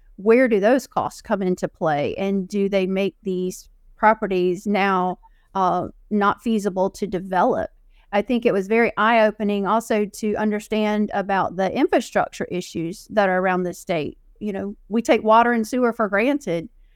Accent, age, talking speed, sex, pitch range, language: American, 40-59, 165 wpm, female, 190-215 Hz, English